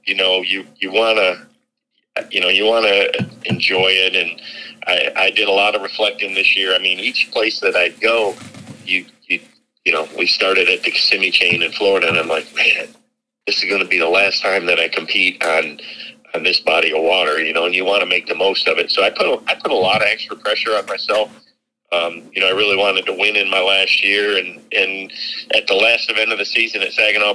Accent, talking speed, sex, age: American, 230 wpm, male, 50-69